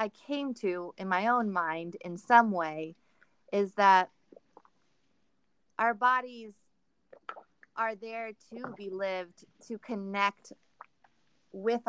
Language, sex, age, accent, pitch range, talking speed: English, female, 30-49, American, 185-225 Hz, 110 wpm